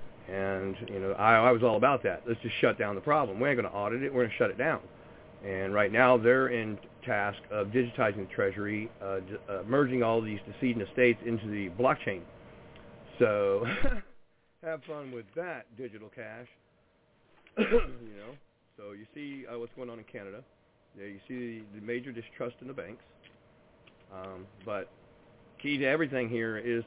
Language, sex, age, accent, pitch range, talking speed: English, male, 40-59, American, 105-125 Hz, 185 wpm